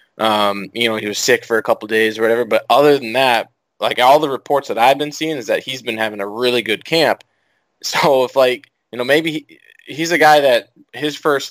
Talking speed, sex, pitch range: 235 wpm, male, 110-125 Hz